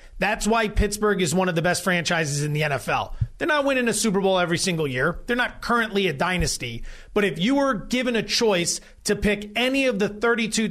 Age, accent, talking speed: 30-49, American, 220 wpm